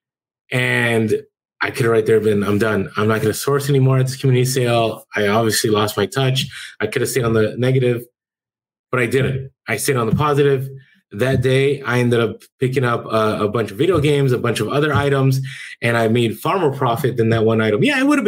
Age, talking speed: 20-39, 235 wpm